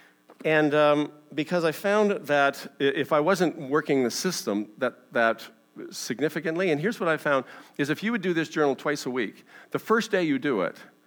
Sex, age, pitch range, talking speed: male, 40-59, 105-155 Hz, 195 wpm